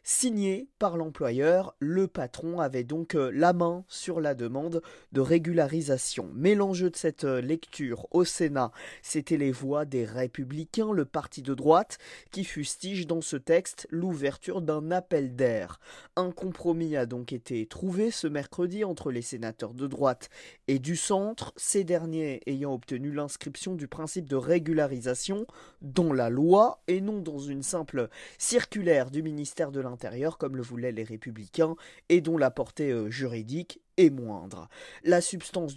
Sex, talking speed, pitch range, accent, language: male, 155 wpm, 135-180 Hz, French, French